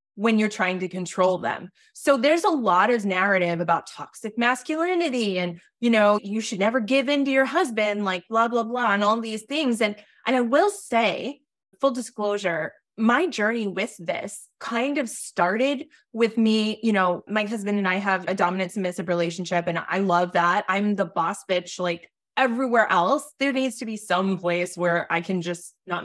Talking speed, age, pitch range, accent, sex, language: 190 wpm, 20-39, 185-255 Hz, American, female, English